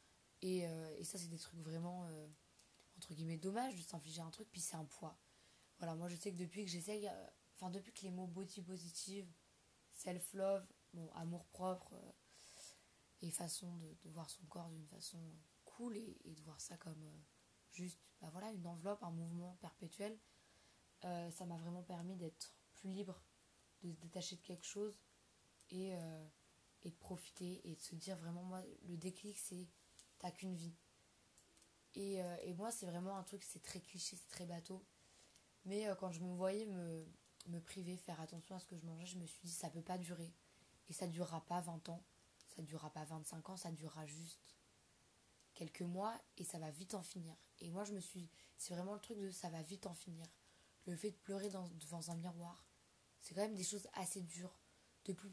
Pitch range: 165-190 Hz